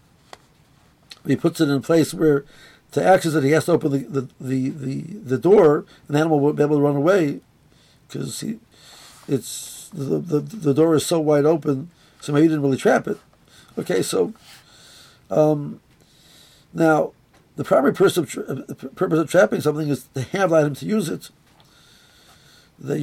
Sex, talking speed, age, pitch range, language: male, 175 wpm, 50-69, 145-170 Hz, English